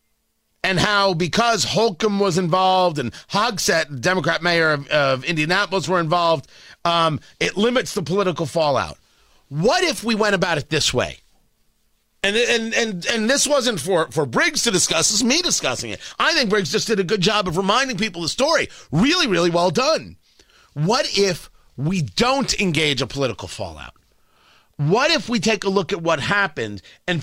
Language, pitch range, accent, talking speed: English, 135-210 Hz, American, 175 wpm